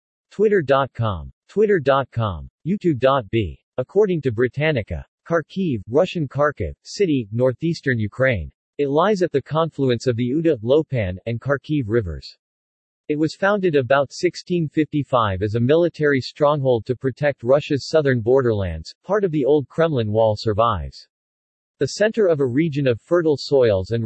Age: 40-59